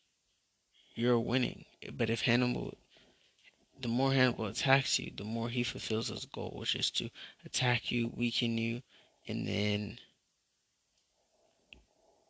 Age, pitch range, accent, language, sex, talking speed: 20-39, 115-125 Hz, American, English, male, 125 wpm